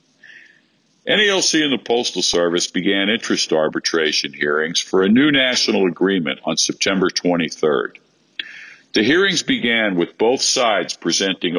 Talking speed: 125 wpm